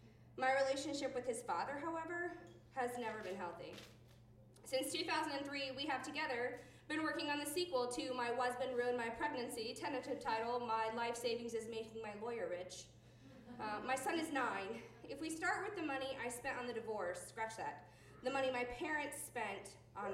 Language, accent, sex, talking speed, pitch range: English, American, female, 180 wpm, 190-270 Hz